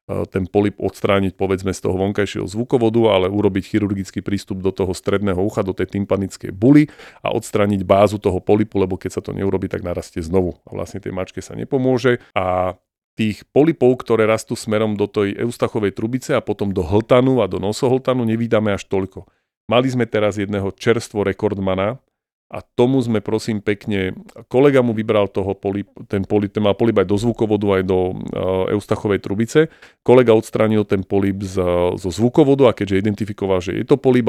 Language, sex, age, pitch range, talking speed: Slovak, male, 40-59, 95-115 Hz, 175 wpm